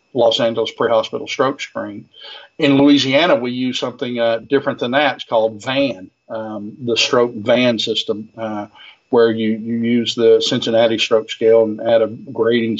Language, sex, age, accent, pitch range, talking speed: English, male, 50-69, American, 110-125 Hz, 165 wpm